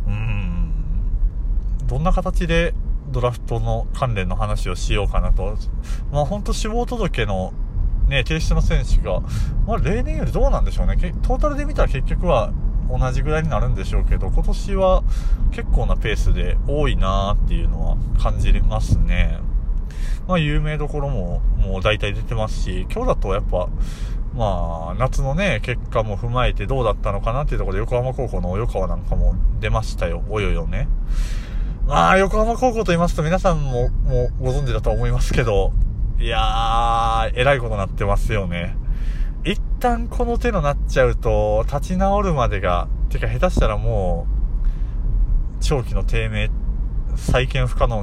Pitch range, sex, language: 95-130 Hz, male, Japanese